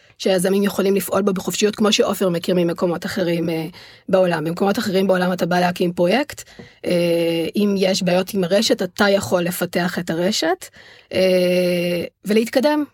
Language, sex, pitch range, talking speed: Hebrew, female, 175-205 Hz, 150 wpm